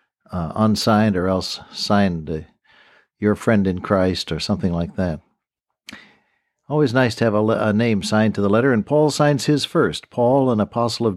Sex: male